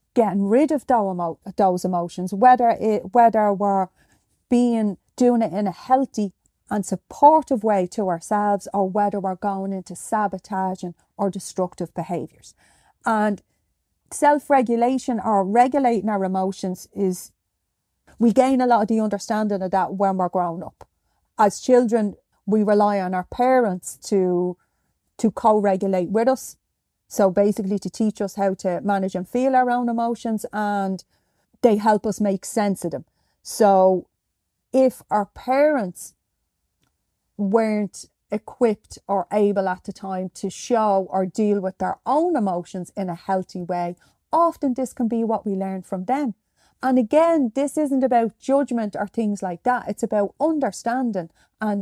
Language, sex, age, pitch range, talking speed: English, female, 30-49, 190-235 Hz, 150 wpm